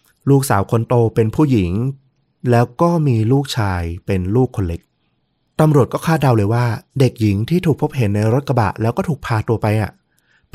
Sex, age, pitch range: male, 20-39, 100-130 Hz